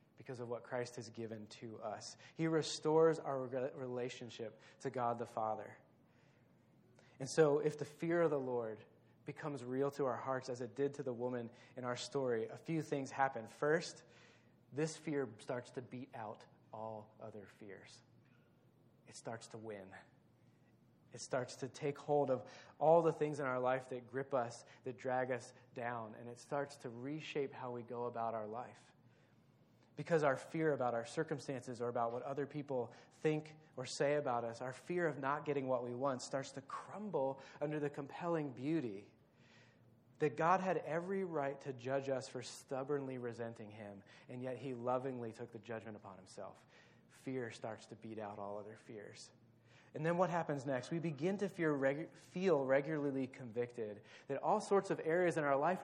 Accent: American